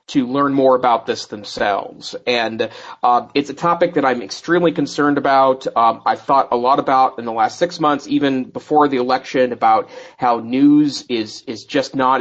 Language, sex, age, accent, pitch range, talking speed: English, male, 30-49, American, 120-150 Hz, 185 wpm